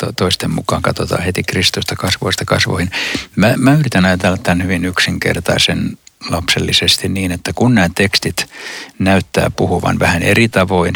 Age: 60-79